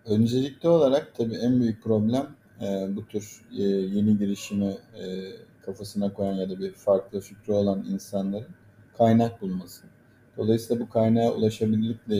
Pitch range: 100-115 Hz